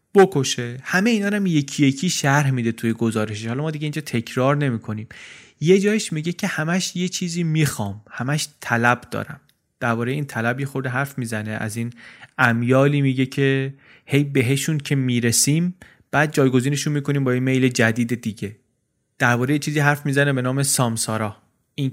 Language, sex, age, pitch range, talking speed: Persian, male, 30-49, 120-150 Hz, 165 wpm